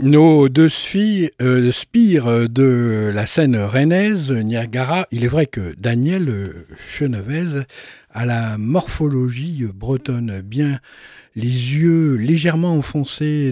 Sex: male